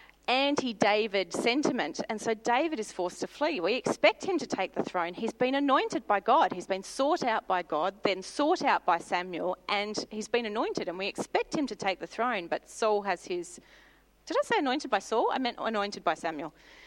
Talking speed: 210 wpm